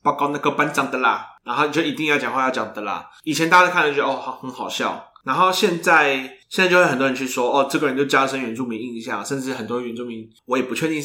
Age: 20-39